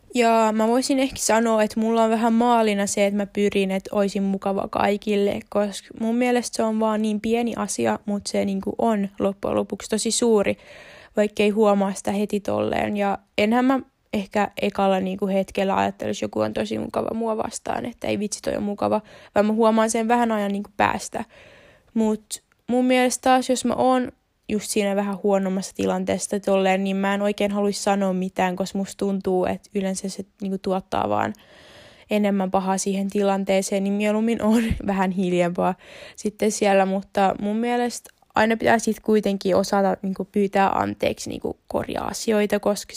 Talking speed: 175 wpm